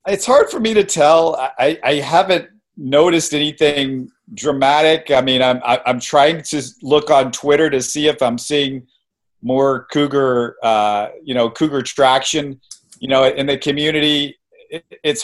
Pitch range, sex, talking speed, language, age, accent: 110-135 Hz, male, 155 wpm, English, 40-59, American